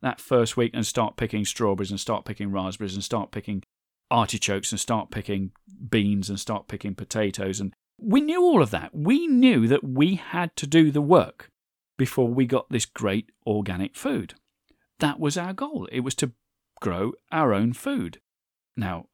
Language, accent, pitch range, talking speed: English, British, 105-140 Hz, 180 wpm